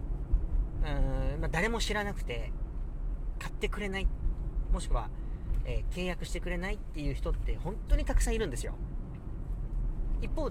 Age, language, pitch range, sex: 40-59, Japanese, 120-175 Hz, male